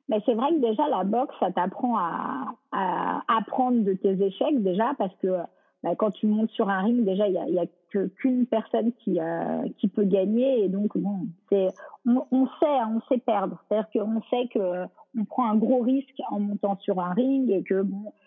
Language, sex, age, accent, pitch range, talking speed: French, female, 40-59, French, 200-250 Hz, 225 wpm